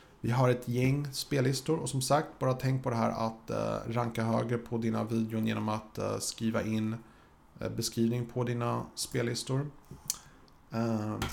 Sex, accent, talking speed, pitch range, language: male, Norwegian, 150 wpm, 110-130 Hz, Swedish